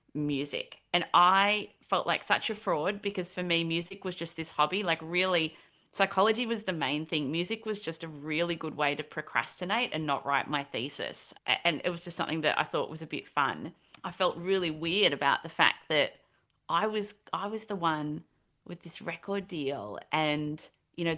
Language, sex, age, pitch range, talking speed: English, female, 30-49, 150-180 Hz, 200 wpm